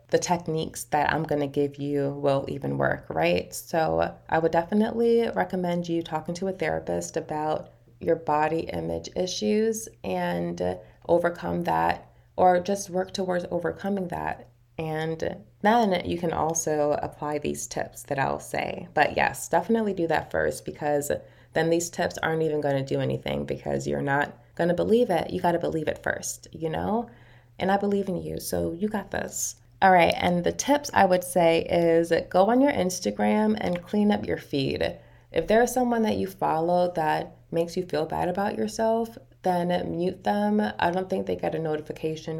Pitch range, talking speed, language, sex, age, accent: 115-185 Hz, 185 wpm, English, female, 20-39, American